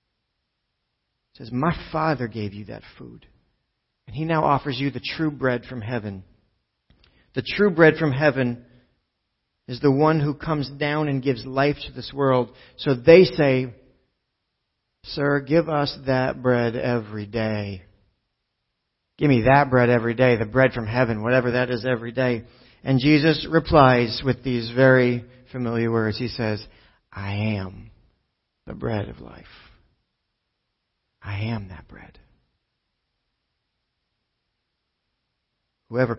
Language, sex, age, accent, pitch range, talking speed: English, male, 40-59, American, 110-140 Hz, 135 wpm